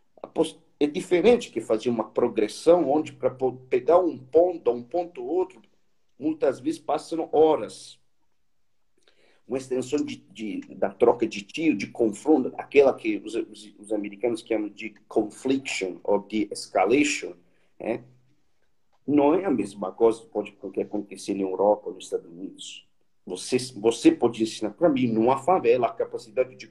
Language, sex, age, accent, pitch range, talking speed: Portuguese, male, 50-69, Brazilian, 115-175 Hz, 150 wpm